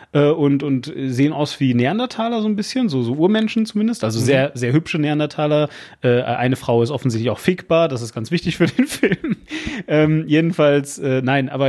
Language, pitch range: German, 130-170 Hz